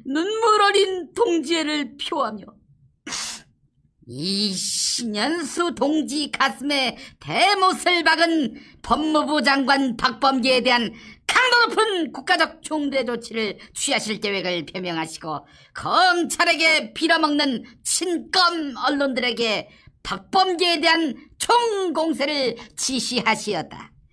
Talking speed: 70 wpm